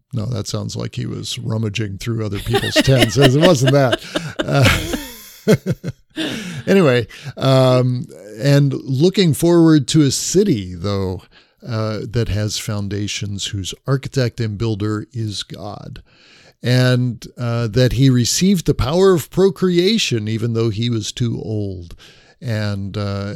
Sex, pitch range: male, 110-135 Hz